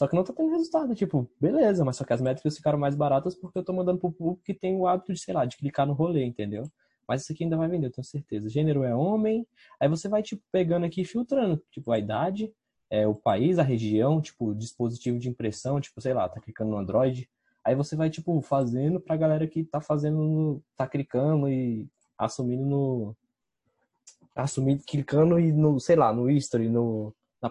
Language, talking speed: Portuguese, 215 wpm